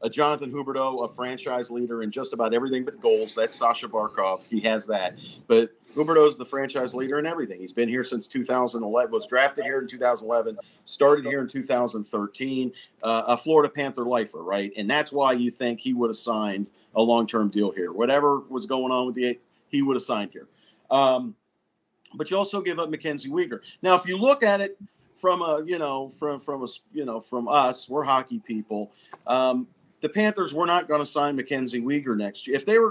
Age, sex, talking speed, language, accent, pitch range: 40-59, male, 205 wpm, English, American, 120-150 Hz